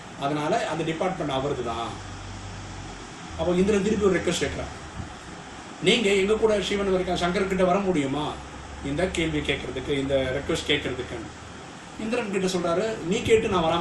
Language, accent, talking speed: English, Indian, 125 wpm